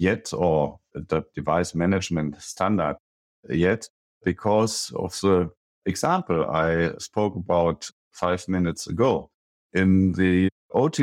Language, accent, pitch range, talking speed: English, German, 90-110 Hz, 110 wpm